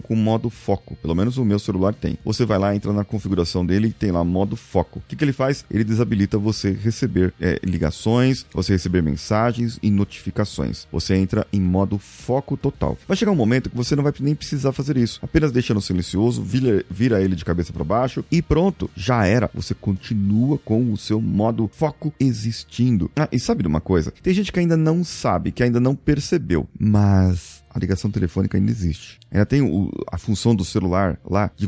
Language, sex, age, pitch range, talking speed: Portuguese, male, 30-49, 95-125 Hz, 210 wpm